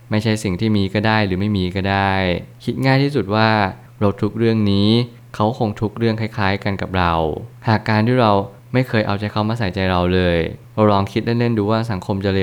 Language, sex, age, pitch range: Thai, male, 20-39, 95-115 Hz